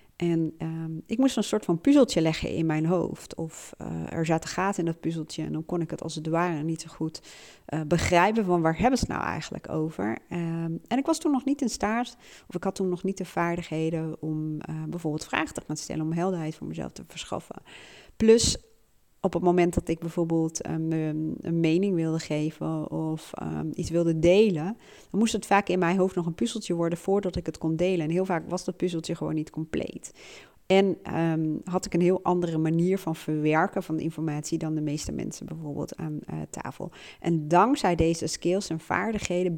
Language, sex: Dutch, female